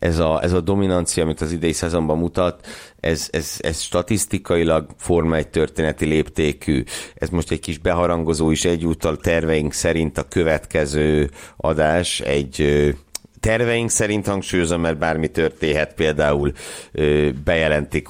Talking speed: 115 wpm